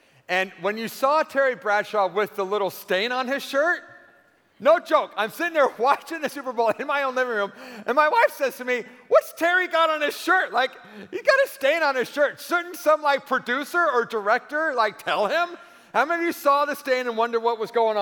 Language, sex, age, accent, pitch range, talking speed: English, male, 40-59, American, 210-285 Hz, 225 wpm